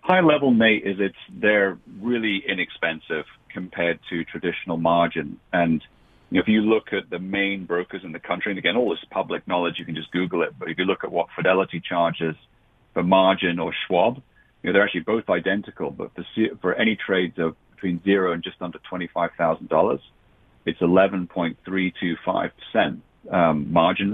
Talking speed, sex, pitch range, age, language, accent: 175 wpm, male, 85-110 Hz, 40-59, English, British